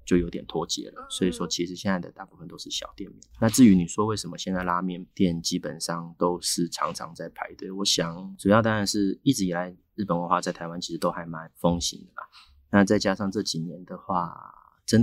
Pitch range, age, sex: 85-95 Hz, 30-49, male